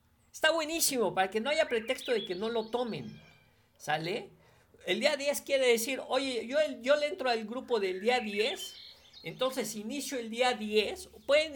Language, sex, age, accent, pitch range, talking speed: Spanish, male, 50-69, Mexican, 200-255 Hz, 175 wpm